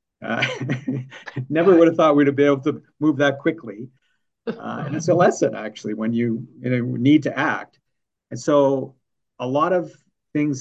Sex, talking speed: male, 180 wpm